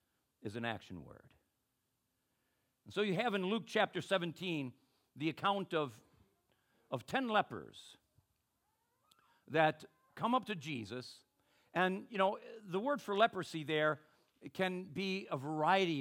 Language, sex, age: English, male, 50-69